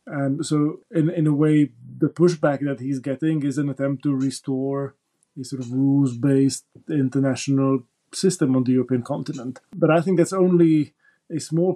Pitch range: 130-145 Hz